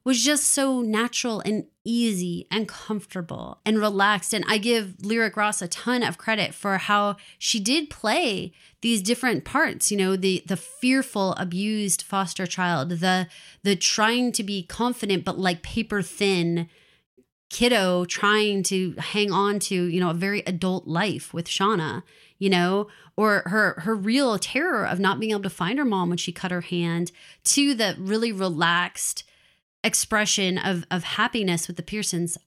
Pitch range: 180-215 Hz